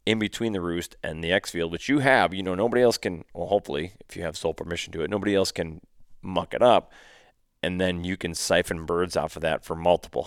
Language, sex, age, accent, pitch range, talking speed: English, male, 30-49, American, 85-105 Hz, 250 wpm